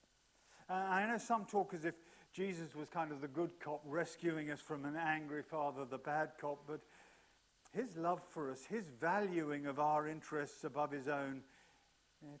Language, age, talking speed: English, 50-69, 180 wpm